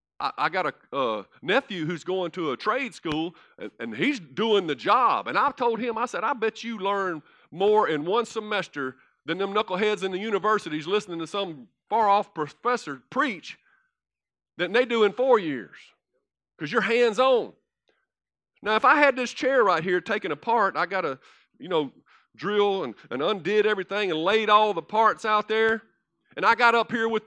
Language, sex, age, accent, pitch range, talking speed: English, male, 40-59, American, 205-250 Hz, 185 wpm